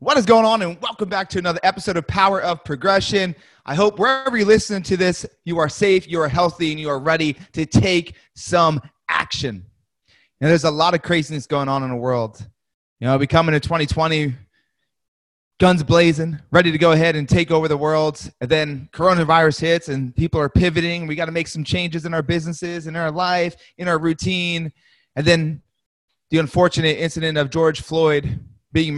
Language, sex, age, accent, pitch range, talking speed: English, male, 30-49, American, 140-170 Hz, 195 wpm